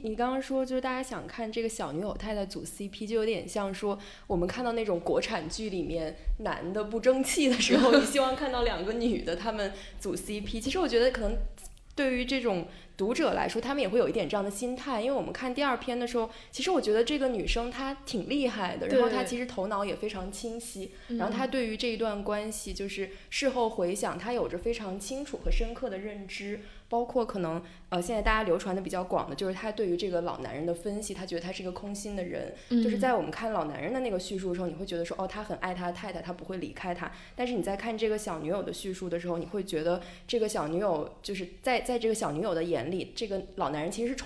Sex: female